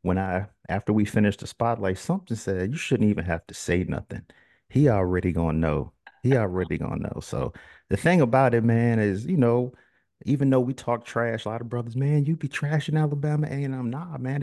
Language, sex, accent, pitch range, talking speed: English, male, American, 105-145 Hz, 210 wpm